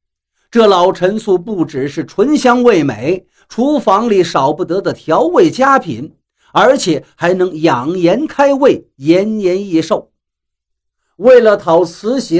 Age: 50-69